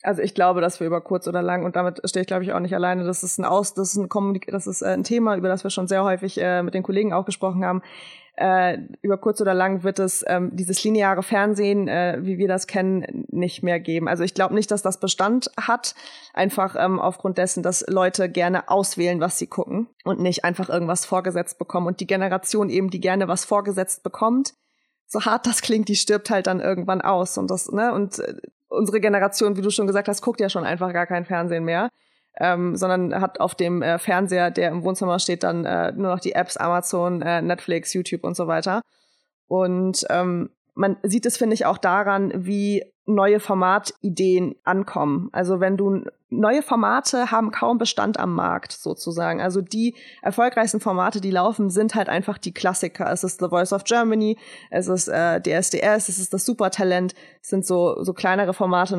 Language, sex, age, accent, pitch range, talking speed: German, female, 20-39, German, 180-205 Hz, 210 wpm